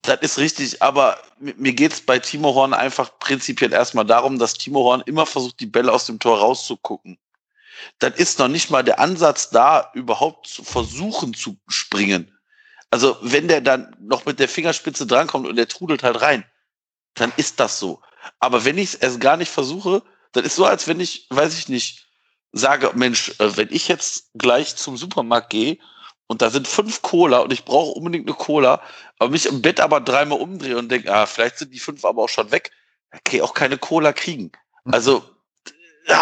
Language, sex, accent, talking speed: German, male, German, 195 wpm